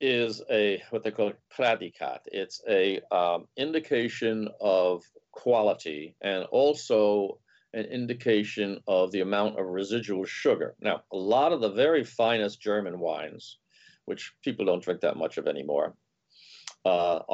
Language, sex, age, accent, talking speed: English, male, 50-69, American, 135 wpm